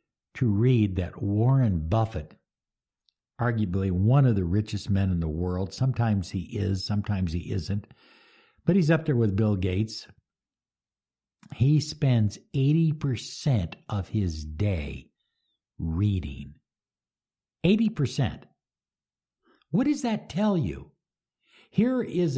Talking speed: 115 wpm